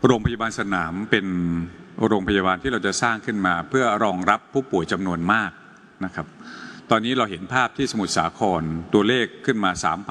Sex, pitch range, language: male, 110-155 Hz, Thai